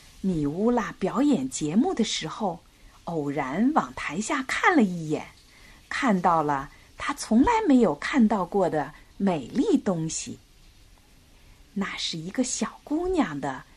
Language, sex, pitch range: Chinese, female, 175-255 Hz